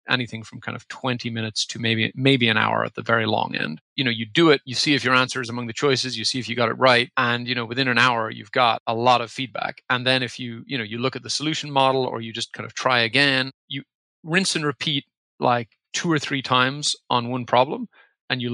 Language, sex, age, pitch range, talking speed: English, male, 40-59, 115-130 Hz, 265 wpm